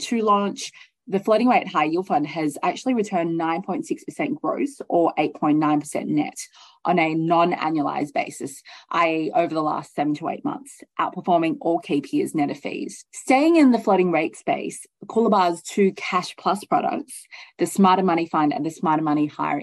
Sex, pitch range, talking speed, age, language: female, 155-255 Hz, 170 wpm, 20-39, English